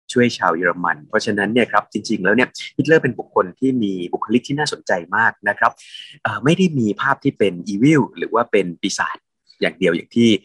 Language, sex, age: Thai, male, 20-39